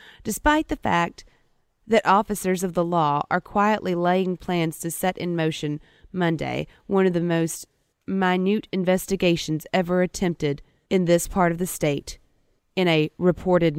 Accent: American